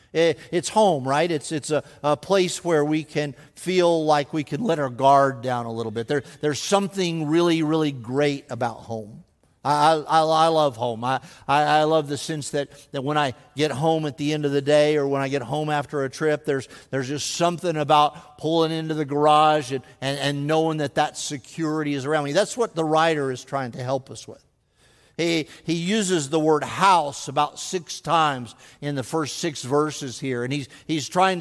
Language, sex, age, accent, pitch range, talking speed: English, male, 50-69, American, 140-165 Hz, 210 wpm